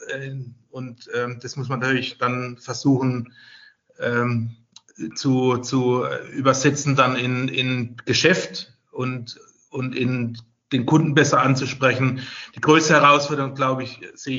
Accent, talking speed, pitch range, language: German, 120 wpm, 120-140 Hz, Polish